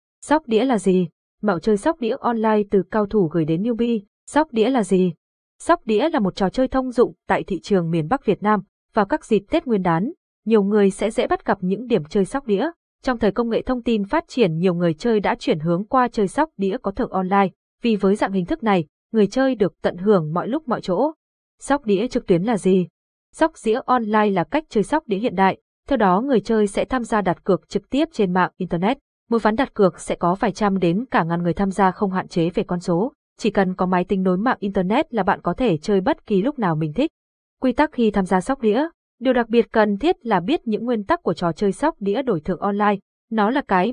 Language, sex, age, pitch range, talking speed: Vietnamese, female, 20-39, 190-240 Hz, 250 wpm